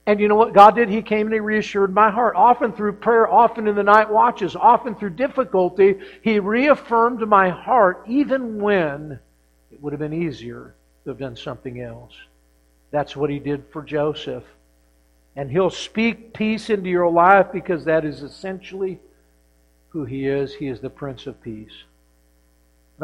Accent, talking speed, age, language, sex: American, 175 wpm, 60-79, English, male